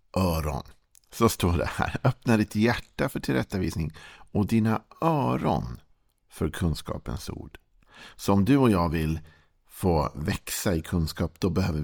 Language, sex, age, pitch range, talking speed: Swedish, male, 50-69, 80-95 Hz, 135 wpm